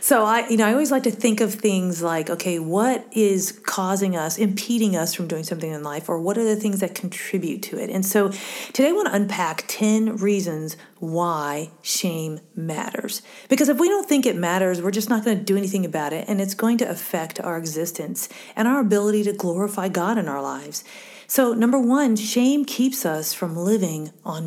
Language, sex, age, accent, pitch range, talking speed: English, female, 40-59, American, 175-230 Hz, 210 wpm